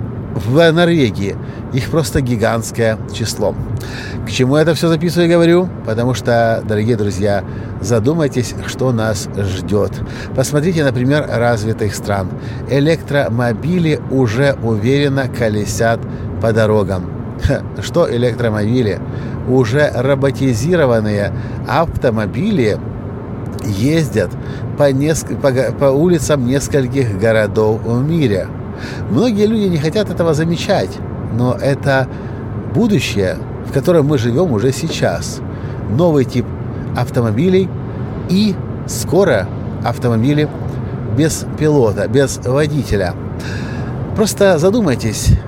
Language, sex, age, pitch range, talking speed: Russian, male, 50-69, 115-140 Hz, 95 wpm